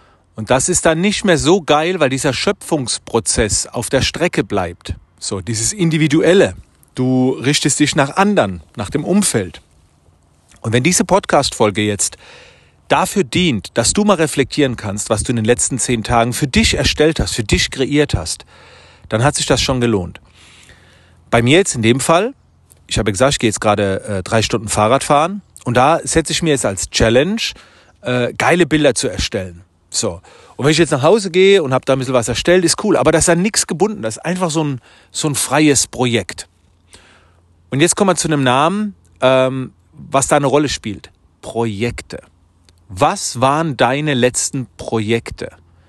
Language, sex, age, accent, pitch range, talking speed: German, male, 40-59, German, 95-150 Hz, 180 wpm